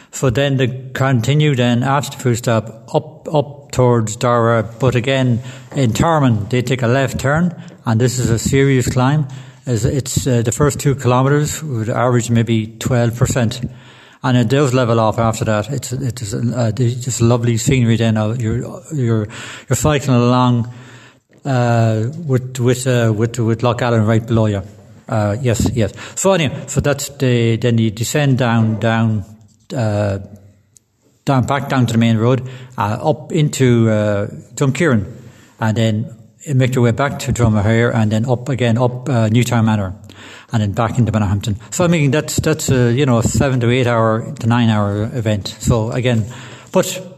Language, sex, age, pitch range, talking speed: English, male, 60-79, 115-135 Hz, 175 wpm